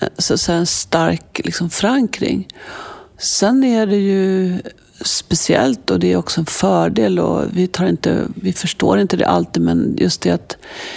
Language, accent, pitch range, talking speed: Swedish, native, 155-195 Hz, 160 wpm